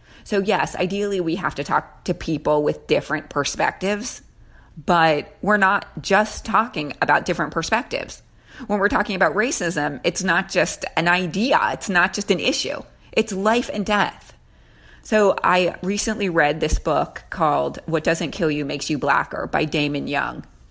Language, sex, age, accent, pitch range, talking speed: English, female, 30-49, American, 155-205 Hz, 160 wpm